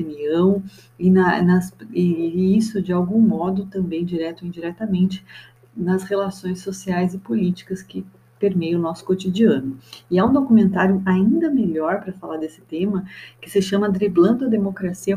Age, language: 30-49, Portuguese